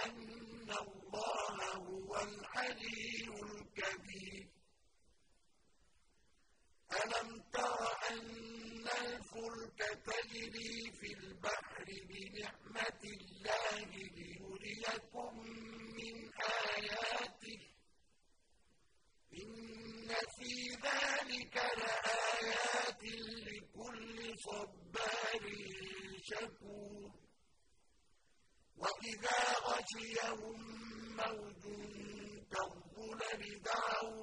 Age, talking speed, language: 50-69, 35 wpm, Arabic